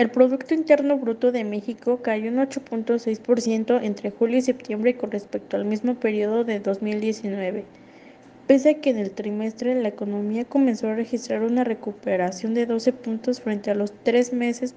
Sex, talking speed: female, 165 wpm